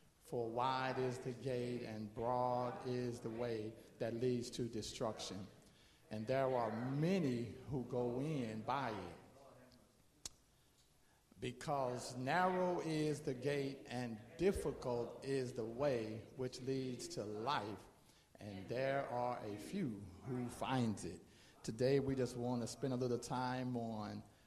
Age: 50-69